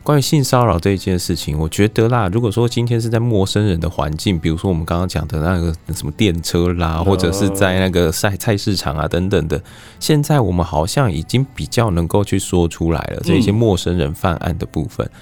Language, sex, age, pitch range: Chinese, male, 20-39, 85-110 Hz